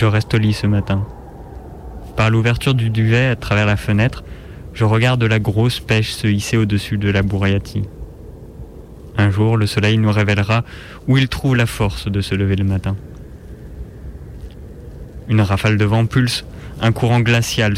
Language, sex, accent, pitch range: French, male, French, 100-120 Hz